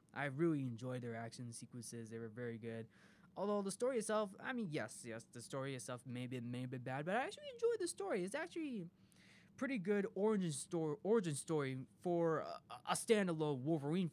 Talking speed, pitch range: 190 wpm, 125-175 Hz